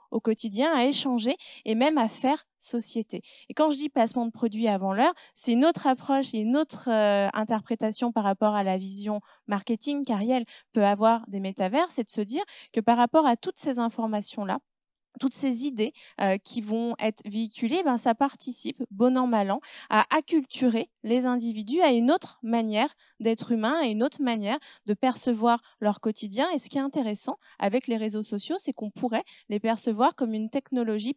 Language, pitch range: French, 215-270 Hz